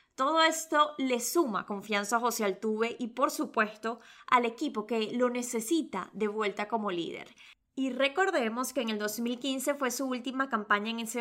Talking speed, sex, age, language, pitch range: 170 wpm, female, 20-39, Spanish, 215-275 Hz